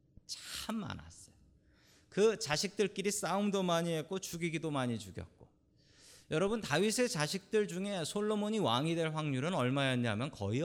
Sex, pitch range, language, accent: male, 115-190 Hz, Korean, native